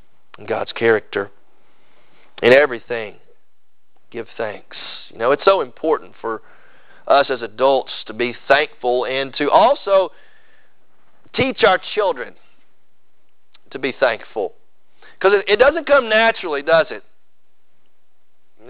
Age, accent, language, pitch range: 40-59, American, English, 175-240 Hz